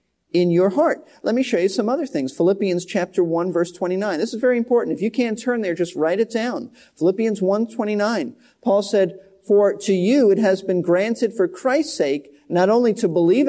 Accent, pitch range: American, 175-245 Hz